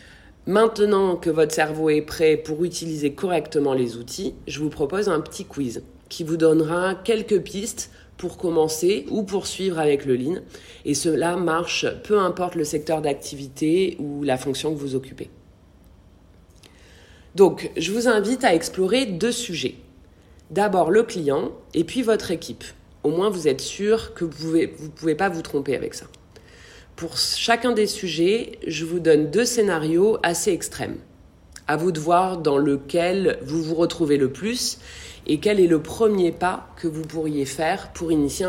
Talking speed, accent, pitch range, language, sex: 165 wpm, French, 140-190 Hz, French, female